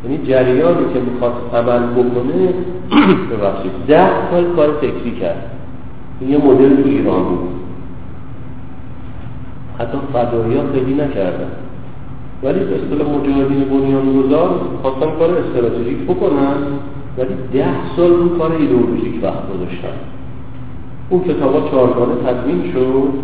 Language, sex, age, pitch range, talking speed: Persian, male, 50-69, 120-150 Hz, 115 wpm